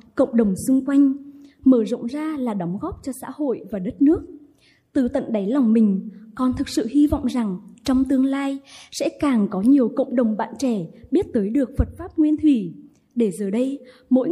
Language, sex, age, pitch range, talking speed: Vietnamese, female, 20-39, 225-285 Hz, 205 wpm